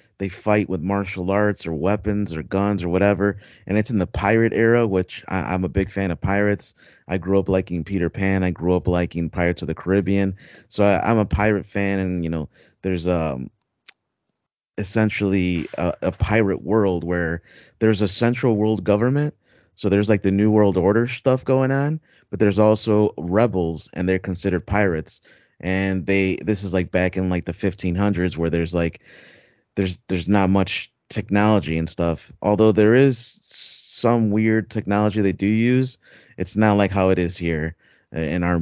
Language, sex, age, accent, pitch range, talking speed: English, male, 30-49, American, 90-105 Hz, 180 wpm